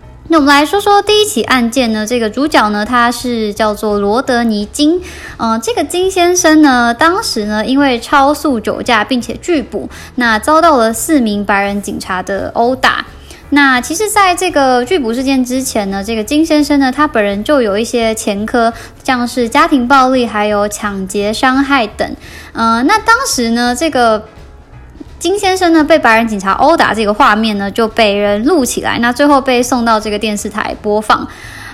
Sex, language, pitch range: male, Chinese, 215-300 Hz